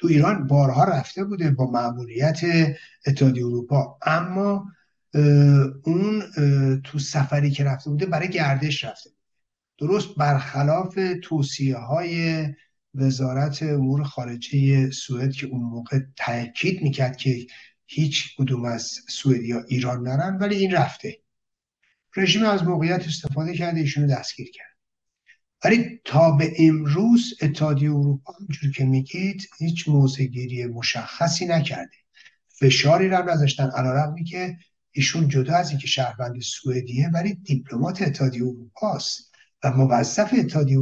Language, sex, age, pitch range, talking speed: Persian, male, 60-79, 135-180 Hz, 120 wpm